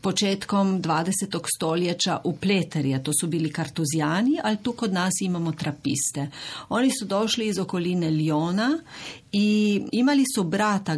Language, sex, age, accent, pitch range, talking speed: Croatian, female, 40-59, native, 160-195 Hz, 155 wpm